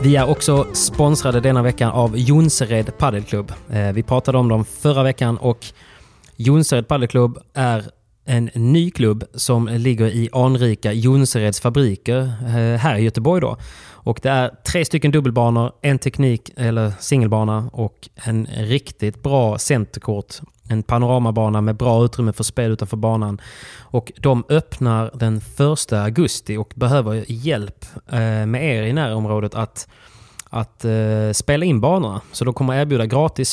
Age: 20-39